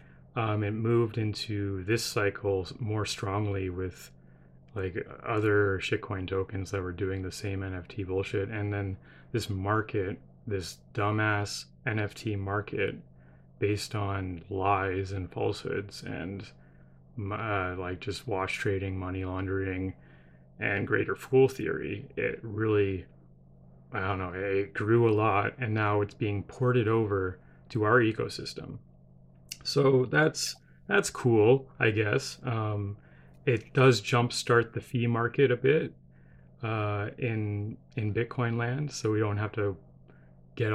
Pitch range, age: 95-115 Hz, 30-49